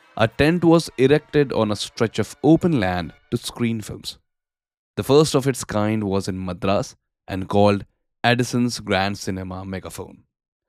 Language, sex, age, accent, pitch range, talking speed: Hindi, male, 10-29, native, 95-135 Hz, 150 wpm